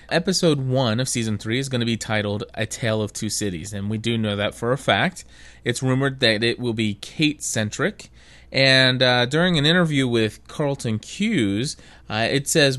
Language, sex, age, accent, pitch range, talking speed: English, male, 30-49, American, 110-145 Hz, 190 wpm